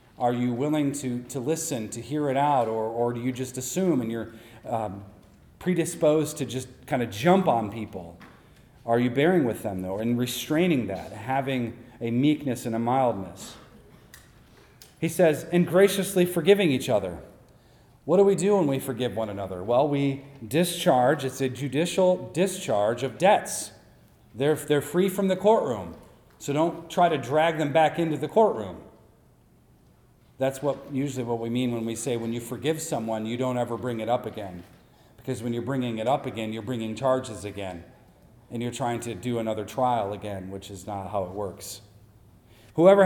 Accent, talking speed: American, 180 wpm